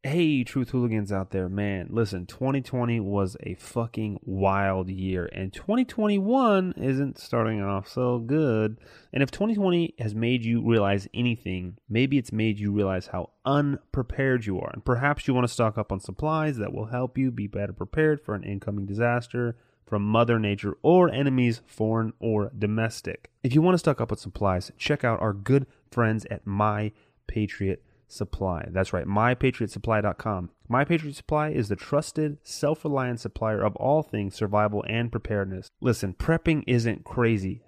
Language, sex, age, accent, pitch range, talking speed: English, male, 30-49, American, 100-135 Hz, 165 wpm